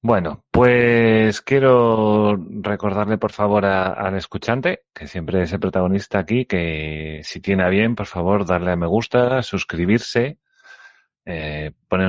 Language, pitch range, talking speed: Spanish, 95-125 Hz, 140 wpm